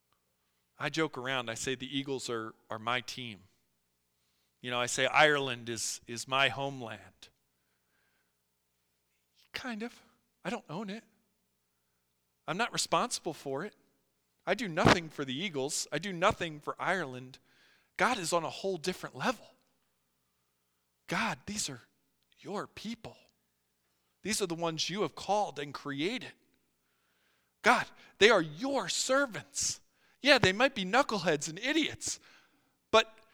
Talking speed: 135 wpm